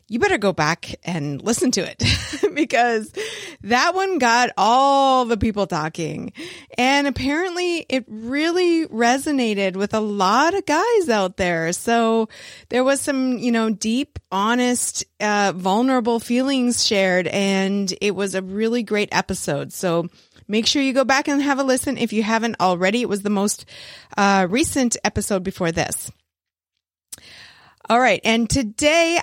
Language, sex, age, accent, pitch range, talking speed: English, female, 30-49, American, 190-250 Hz, 150 wpm